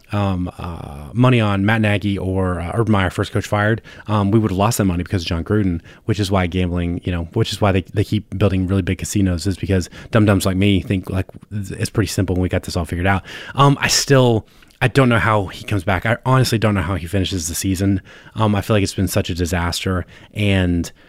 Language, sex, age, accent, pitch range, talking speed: English, male, 20-39, American, 95-110 Hz, 250 wpm